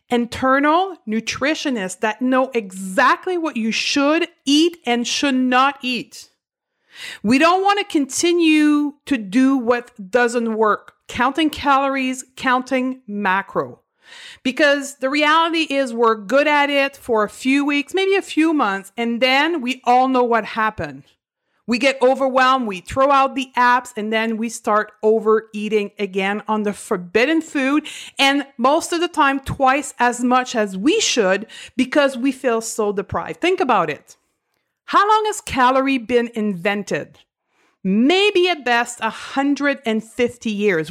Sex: female